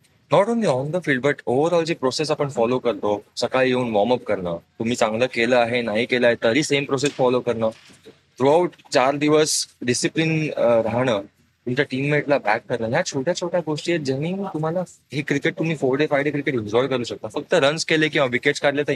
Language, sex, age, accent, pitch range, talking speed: Marathi, male, 20-39, native, 120-150 Hz, 195 wpm